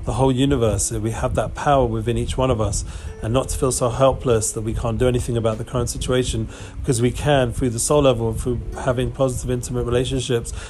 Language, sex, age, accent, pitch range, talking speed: English, male, 40-59, British, 110-130 Hz, 225 wpm